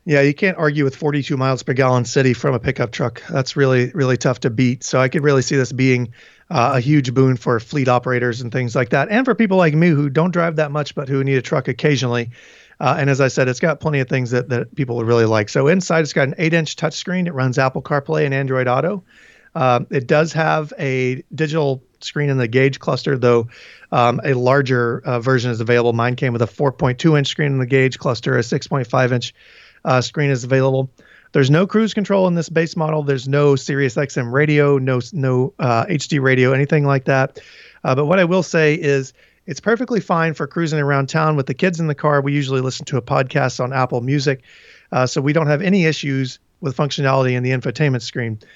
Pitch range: 130-155 Hz